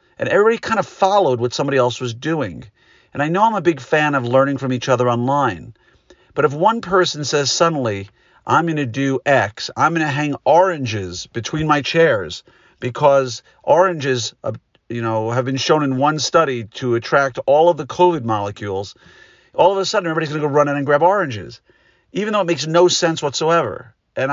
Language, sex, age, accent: English, male, 50-69, American